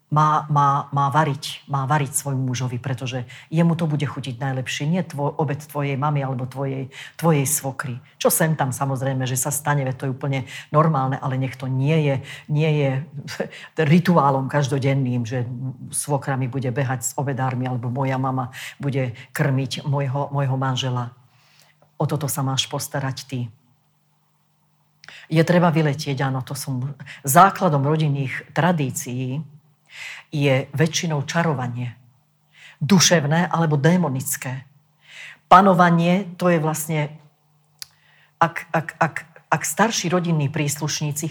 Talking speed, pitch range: 130 wpm, 135-155 Hz